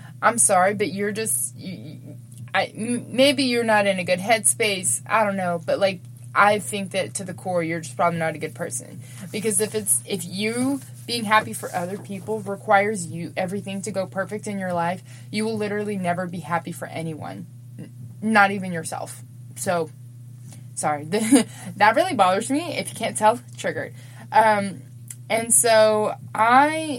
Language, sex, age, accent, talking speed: English, female, 20-39, American, 175 wpm